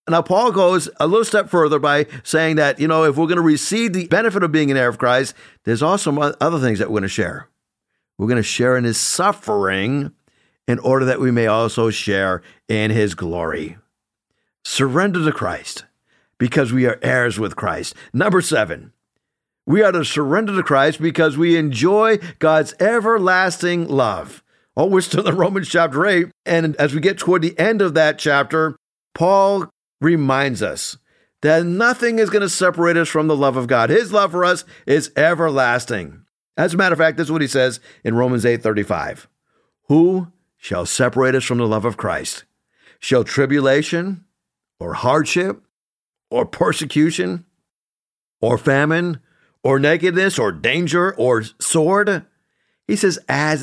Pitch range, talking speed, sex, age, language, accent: 125-180 Hz, 170 wpm, male, 50-69, English, American